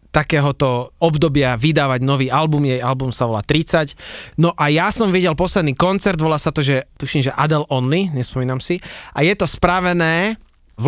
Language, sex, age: Slovak, male, 20-39